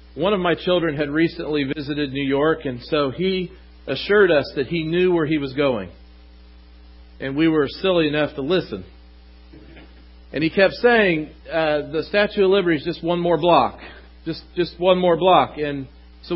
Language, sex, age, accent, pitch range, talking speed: English, male, 40-59, American, 110-170 Hz, 180 wpm